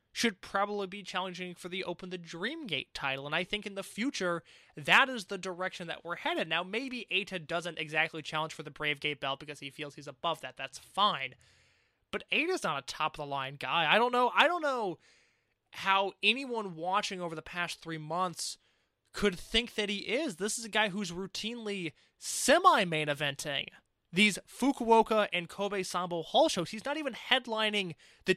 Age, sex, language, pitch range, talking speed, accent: 20-39, male, English, 160-215 Hz, 180 wpm, American